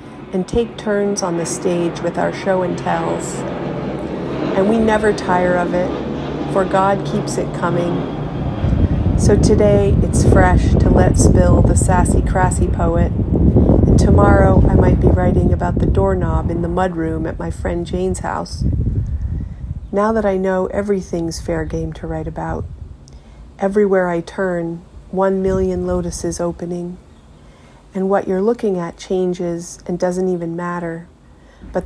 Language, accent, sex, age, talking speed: English, American, female, 40-59, 145 wpm